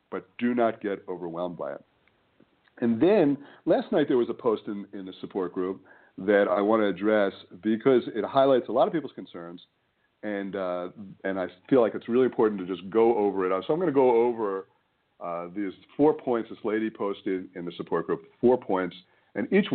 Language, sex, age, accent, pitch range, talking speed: English, male, 50-69, American, 95-125 Hz, 205 wpm